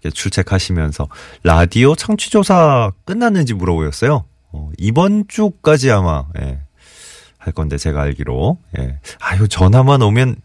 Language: Korean